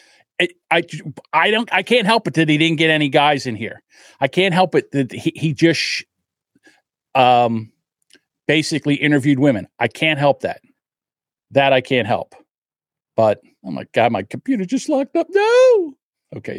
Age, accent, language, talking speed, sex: 50-69, American, English, 170 wpm, male